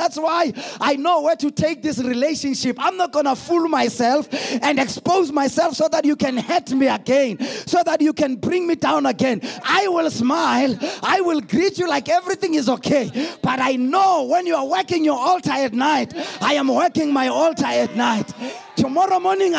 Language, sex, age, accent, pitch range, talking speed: English, male, 30-49, South African, 215-335 Hz, 195 wpm